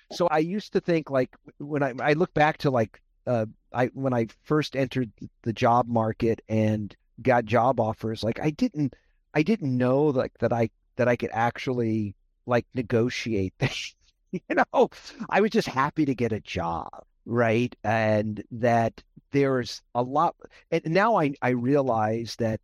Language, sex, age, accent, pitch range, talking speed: English, male, 50-69, American, 115-145 Hz, 170 wpm